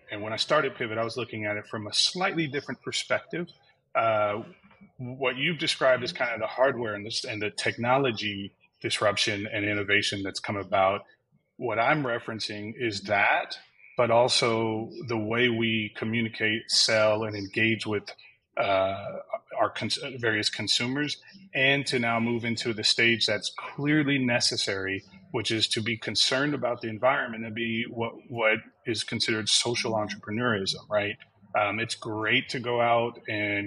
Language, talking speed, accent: English, 160 wpm, American